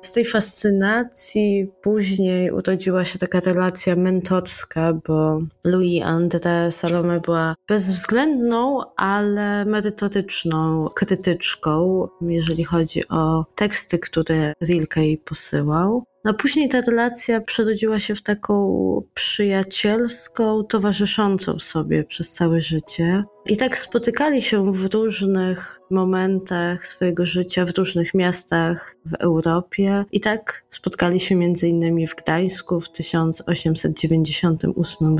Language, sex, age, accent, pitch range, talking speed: Polish, female, 20-39, native, 170-205 Hz, 105 wpm